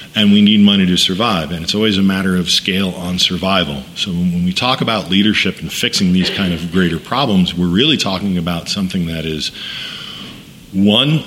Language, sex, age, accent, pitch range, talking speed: English, male, 40-59, American, 90-130 Hz, 190 wpm